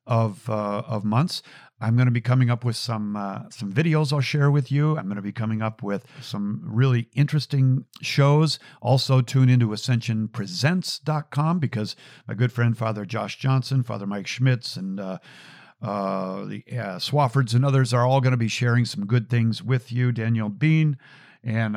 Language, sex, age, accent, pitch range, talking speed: English, male, 50-69, American, 105-140 Hz, 180 wpm